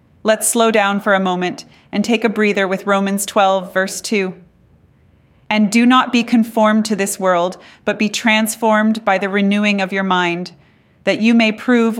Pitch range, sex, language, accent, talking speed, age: 160-195 Hz, female, English, American, 180 wpm, 30-49